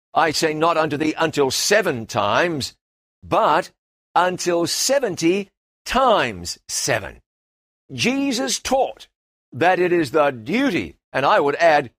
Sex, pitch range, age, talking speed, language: male, 165-235 Hz, 60-79, 120 wpm, English